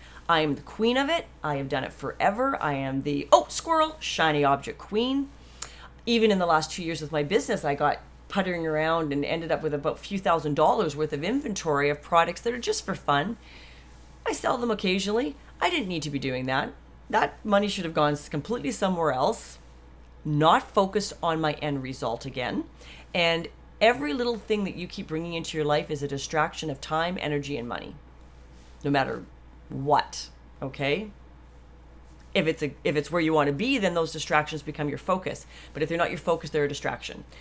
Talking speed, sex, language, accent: 200 wpm, female, English, American